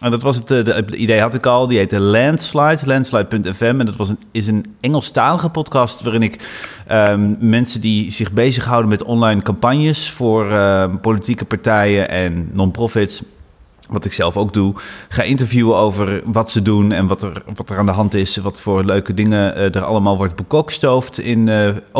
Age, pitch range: 30-49, 105-135 Hz